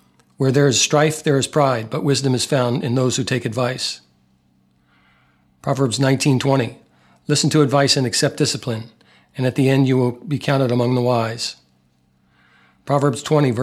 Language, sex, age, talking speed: English, male, 40-59, 160 wpm